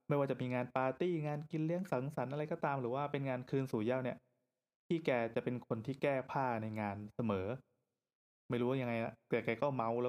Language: Thai